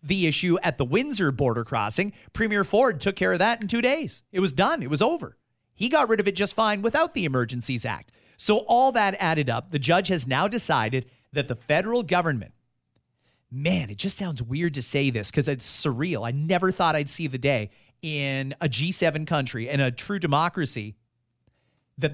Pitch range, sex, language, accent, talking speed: 130-195 Hz, male, English, American, 200 wpm